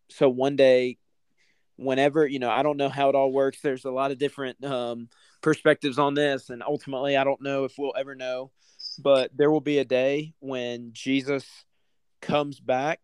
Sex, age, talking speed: male, 20-39, 190 wpm